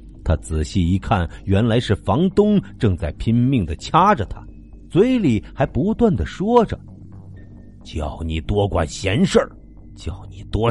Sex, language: male, Chinese